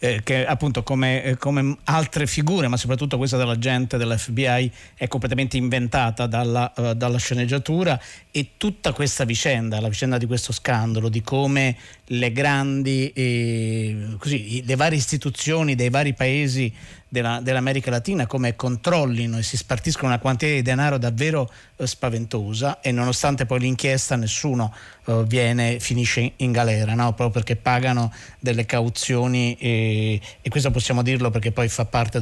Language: Italian